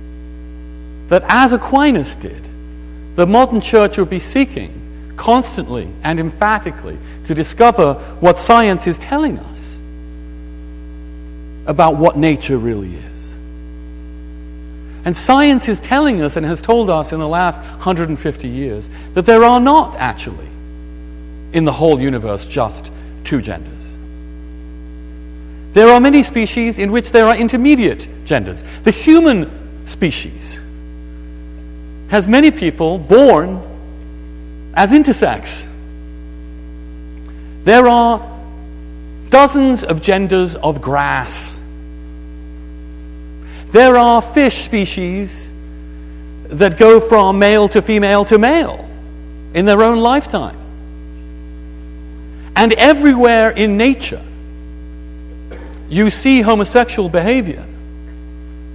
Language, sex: English, male